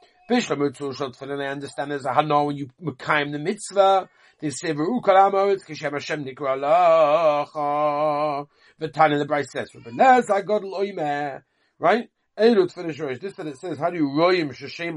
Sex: male